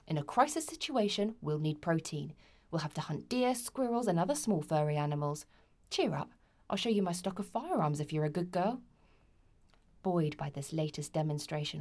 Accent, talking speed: British, 190 wpm